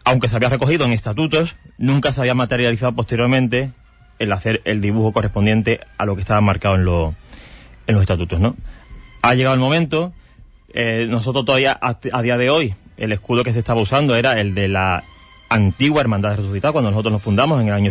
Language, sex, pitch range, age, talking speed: Spanish, male, 100-125 Hz, 30-49, 200 wpm